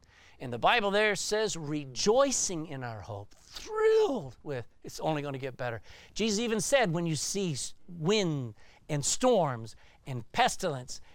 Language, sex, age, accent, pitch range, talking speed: English, male, 50-69, American, 125-195 Hz, 150 wpm